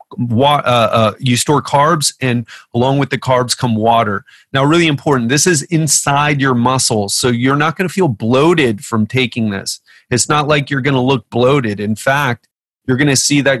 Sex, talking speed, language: male, 205 wpm, English